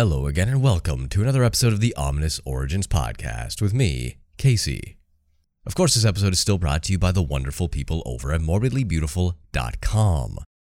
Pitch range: 75-100 Hz